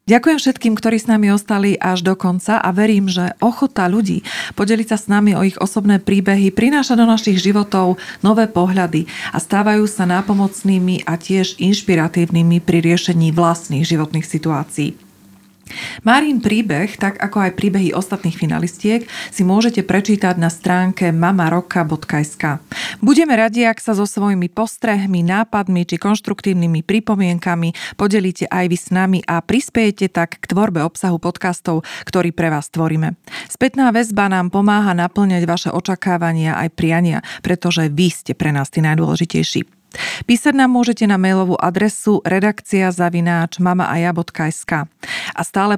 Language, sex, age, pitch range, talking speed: Slovak, female, 30-49, 170-210 Hz, 140 wpm